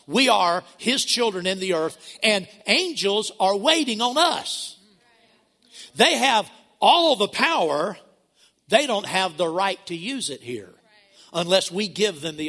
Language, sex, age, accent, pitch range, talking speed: English, male, 60-79, American, 160-200 Hz, 155 wpm